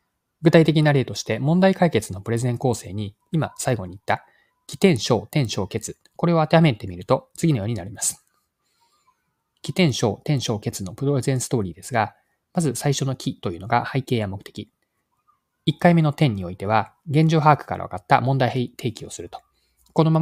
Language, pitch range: Japanese, 110-155 Hz